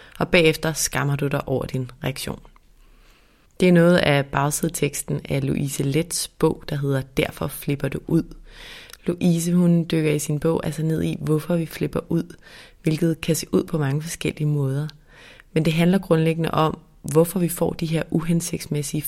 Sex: female